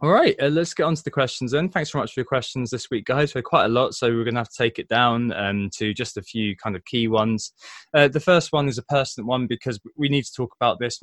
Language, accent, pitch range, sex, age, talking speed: English, British, 115-140 Hz, male, 20-39, 310 wpm